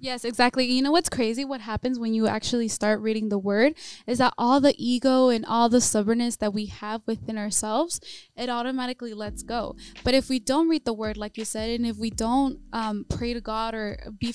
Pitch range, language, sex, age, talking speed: 220-260 Hz, English, female, 10-29, 220 wpm